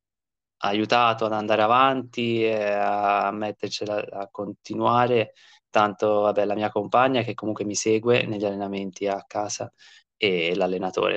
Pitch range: 100-110 Hz